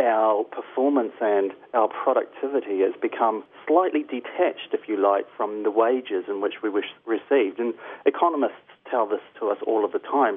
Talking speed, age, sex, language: 175 wpm, 40-59, male, English